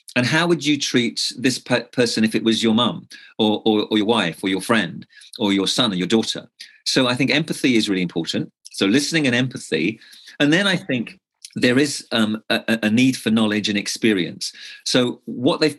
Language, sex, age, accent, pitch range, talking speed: English, male, 40-59, British, 105-130 Hz, 205 wpm